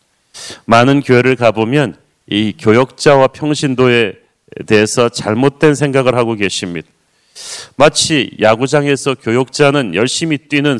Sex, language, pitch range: male, Korean, 125-155 Hz